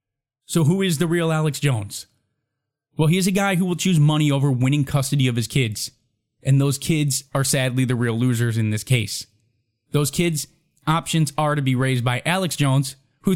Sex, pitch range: male, 125-155 Hz